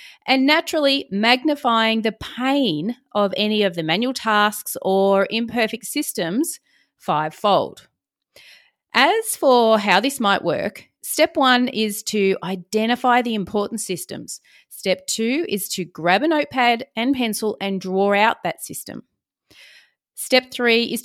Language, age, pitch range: English, 30-49, 195-255 Hz